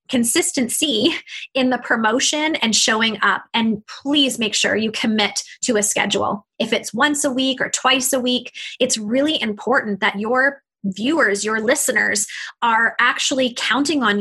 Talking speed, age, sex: 155 wpm, 20-39, female